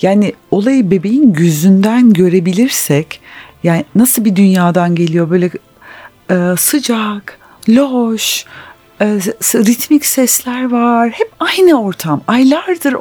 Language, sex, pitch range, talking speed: Turkish, female, 185-265 Hz, 100 wpm